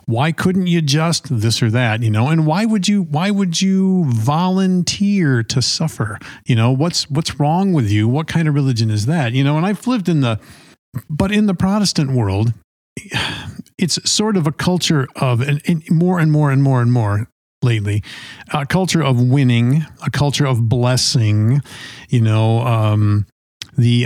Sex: male